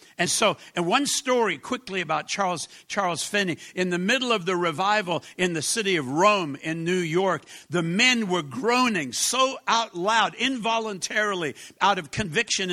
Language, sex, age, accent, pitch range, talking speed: English, male, 60-79, American, 175-225 Hz, 165 wpm